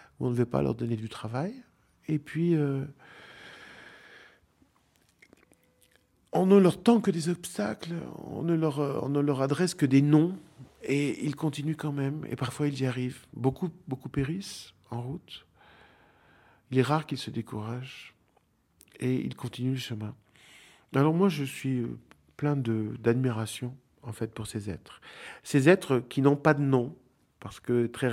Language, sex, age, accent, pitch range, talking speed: French, male, 50-69, French, 115-145 Hz, 155 wpm